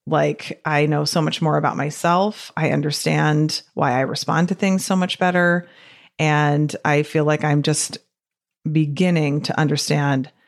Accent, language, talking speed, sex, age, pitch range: American, English, 155 wpm, female, 30-49, 145-155 Hz